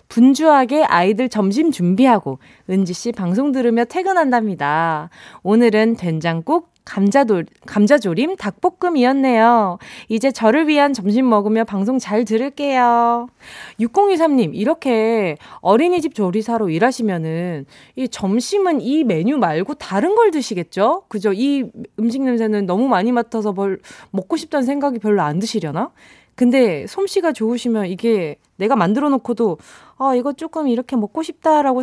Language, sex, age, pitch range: Korean, female, 20-39, 200-285 Hz